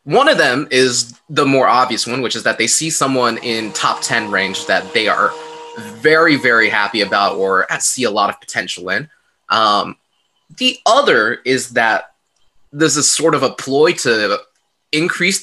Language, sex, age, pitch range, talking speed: English, male, 20-39, 115-180 Hz, 175 wpm